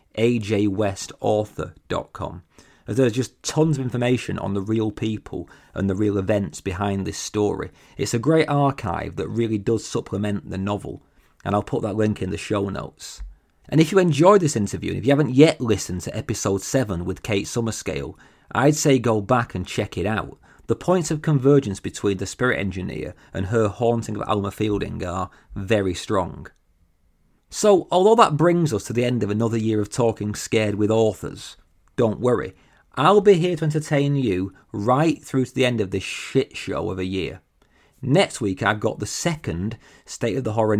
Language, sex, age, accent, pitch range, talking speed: English, male, 40-59, British, 100-130 Hz, 185 wpm